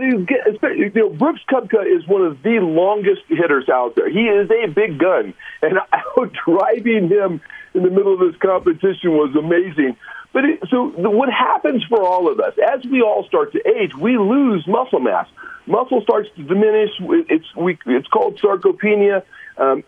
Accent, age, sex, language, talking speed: American, 50-69, male, English, 180 wpm